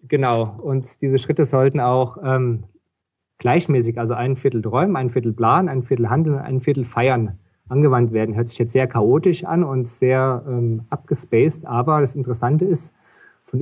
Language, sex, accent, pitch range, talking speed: German, male, German, 125-145 Hz, 165 wpm